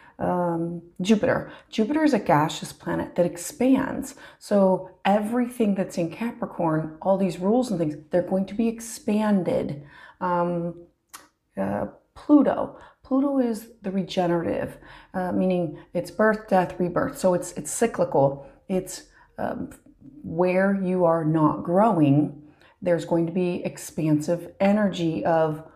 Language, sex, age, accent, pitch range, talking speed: English, female, 30-49, American, 170-220 Hz, 130 wpm